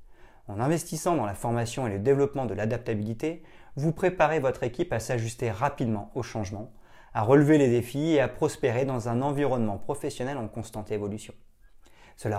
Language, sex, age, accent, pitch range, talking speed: French, male, 30-49, French, 105-135 Hz, 165 wpm